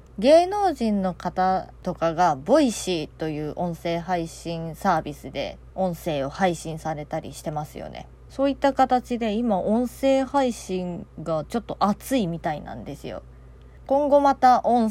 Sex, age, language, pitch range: female, 20-39, Japanese, 175-225 Hz